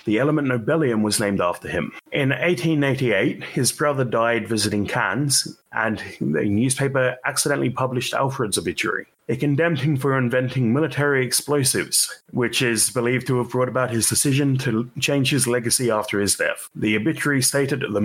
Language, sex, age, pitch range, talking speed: English, male, 30-49, 120-145 Hz, 160 wpm